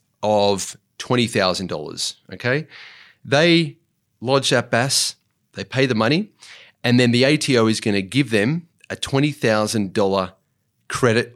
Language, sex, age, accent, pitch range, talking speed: English, male, 30-49, Australian, 100-125 Hz, 120 wpm